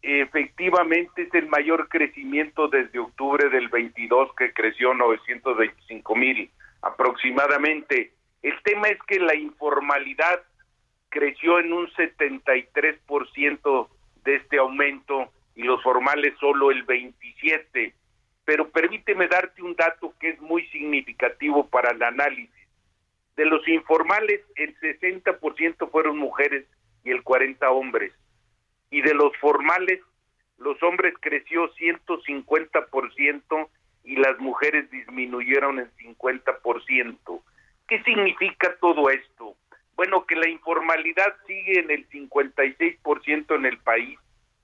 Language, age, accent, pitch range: Spanish, 50-69, Mexican, 140-165 Hz